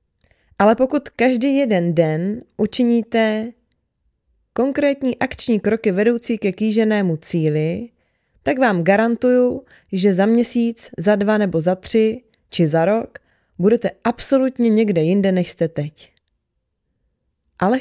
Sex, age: female, 20-39